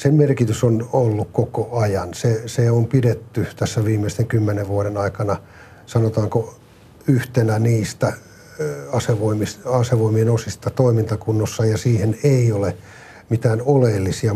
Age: 50-69